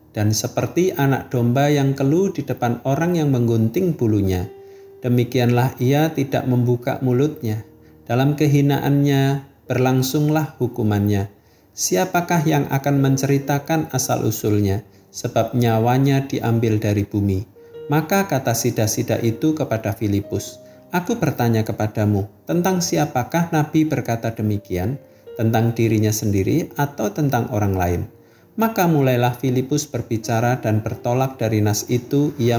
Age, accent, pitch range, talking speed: 50-69, native, 110-145 Hz, 115 wpm